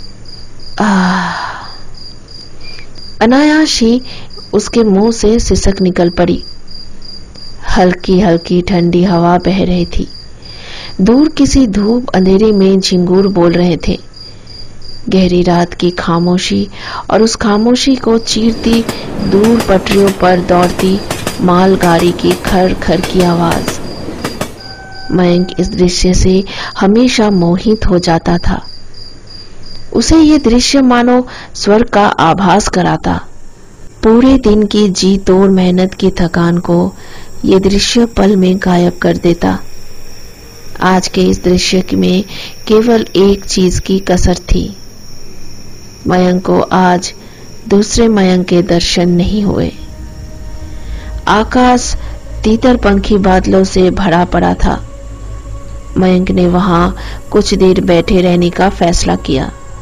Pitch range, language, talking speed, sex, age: 170-205 Hz, Hindi, 115 wpm, female, 50-69